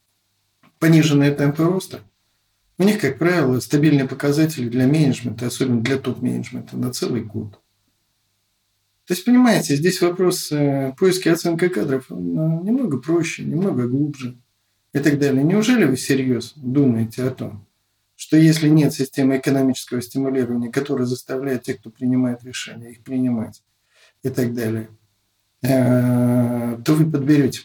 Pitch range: 110-150 Hz